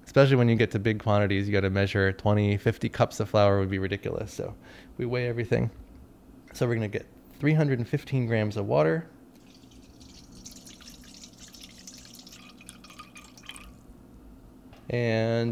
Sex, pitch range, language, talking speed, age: male, 105-130 Hz, English, 120 wpm, 20-39